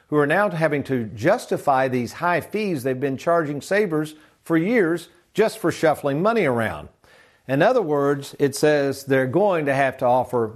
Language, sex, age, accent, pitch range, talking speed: English, male, 50-69, American, 130-175 Hz, 175 wpm